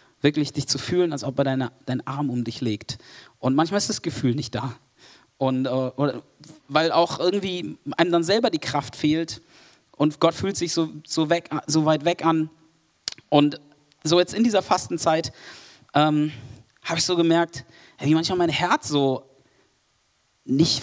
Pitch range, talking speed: 130-165 Hz, 170 wpm